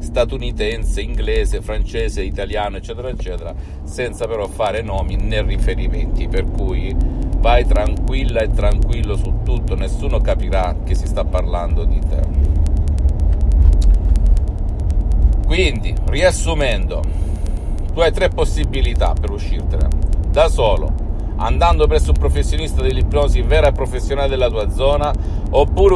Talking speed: 115 wpm